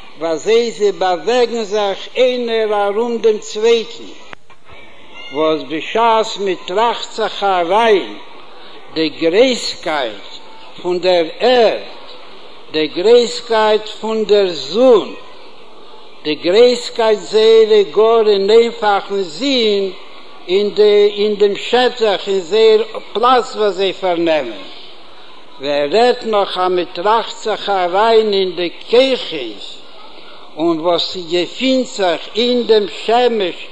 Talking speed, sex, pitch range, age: 90 wpm, male, 190-245 Hz, 60-79